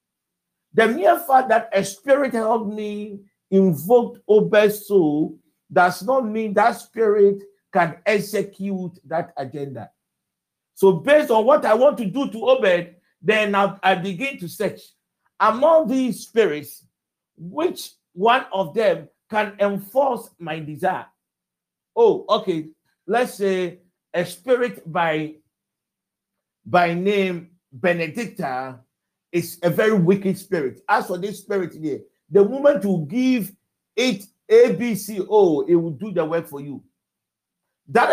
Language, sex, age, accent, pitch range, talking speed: English, male, 50-69, Nigerian, 175-230 Hz, 130 wpm